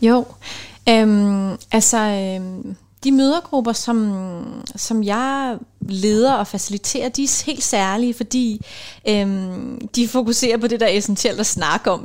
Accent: native